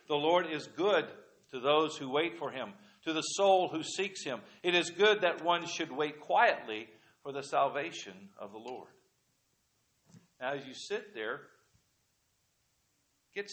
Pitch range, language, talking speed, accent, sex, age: 130-165 Hz, English, 160 wpm, American, male, 50-69